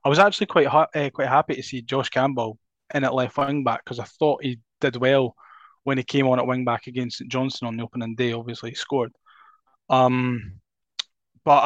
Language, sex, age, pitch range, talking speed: English, male, 10-29, 125-140 Hz, 215 wpm